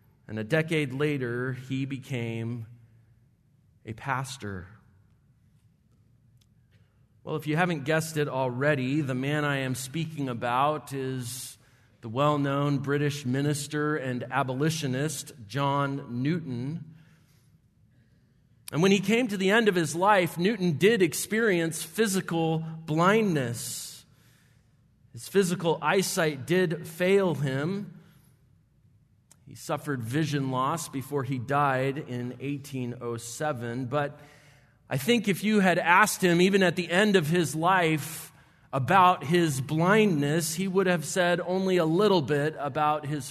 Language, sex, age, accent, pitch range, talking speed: English, male, 40-59, American, 130-165 Hz, 120 wpm